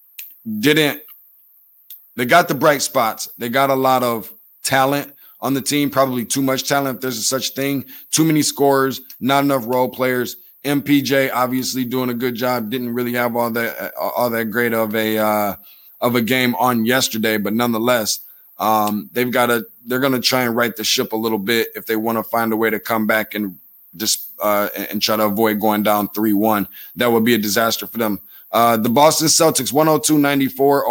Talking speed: 200 wpm